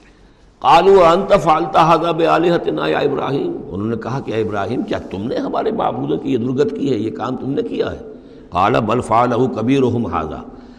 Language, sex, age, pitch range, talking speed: Urdu, male, 60-79, 115-160 Hz, 180 wpm